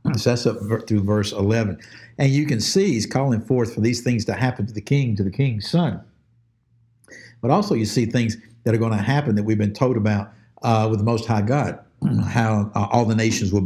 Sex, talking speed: male, 230 wpm